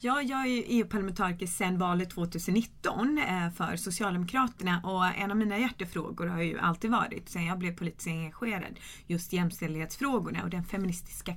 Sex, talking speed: female, 140 wpm